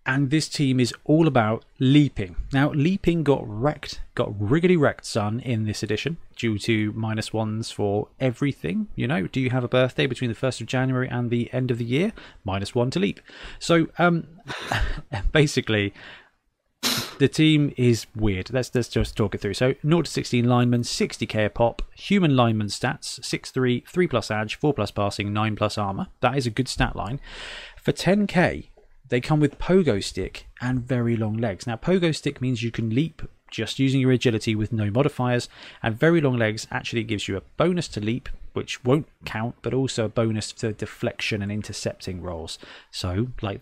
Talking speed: 180 wpm